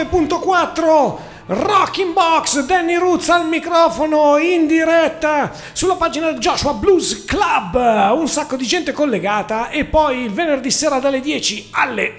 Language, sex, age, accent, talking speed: Italian, male, 40-59, native, 150 wpm